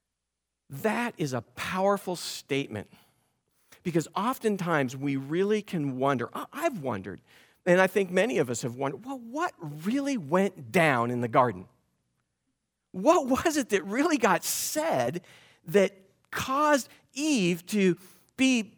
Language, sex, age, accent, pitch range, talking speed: English, male, 50-69, American, 130-220 Hz, 130 wpm